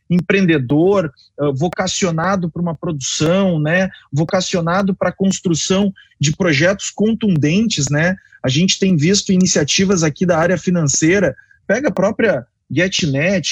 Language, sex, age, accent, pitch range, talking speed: Portuguese, male, 30-49, Brazilian, 160-205 Hz, 125 wpm